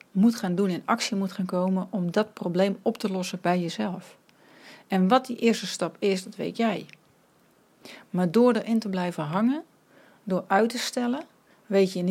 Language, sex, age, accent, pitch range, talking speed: Dutch, female, 40-59, Dutch, 175-225 Hz, 190 wpm